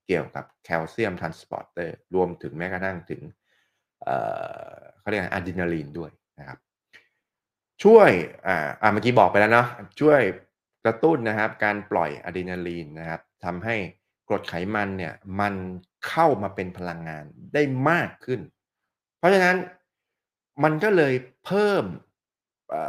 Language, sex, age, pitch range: Thai, male, 20-39, 95-125 Hz